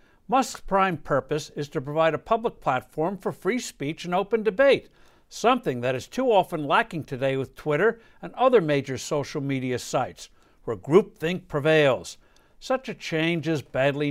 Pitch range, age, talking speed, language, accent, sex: 145-220 Hz, 60-79, 160 wpm, English, American, male